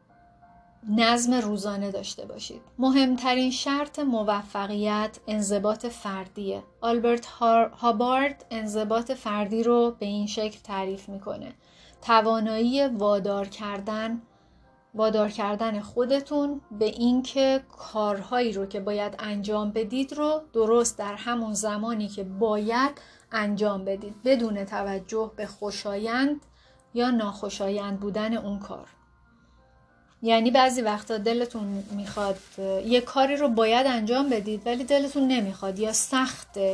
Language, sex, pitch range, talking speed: Persian, female, 205-245 Hz, 110 wpm